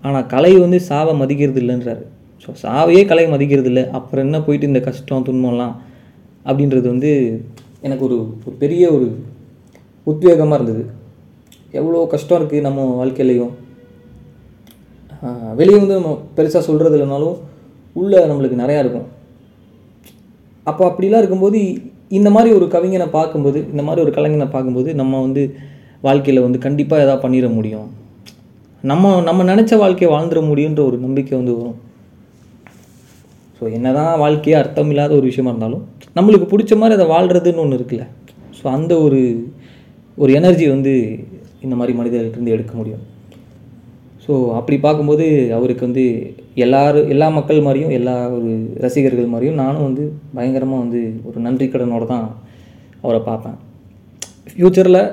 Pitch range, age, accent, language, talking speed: 120-150 Hz, 20-39, native, Tamil, 130 wpm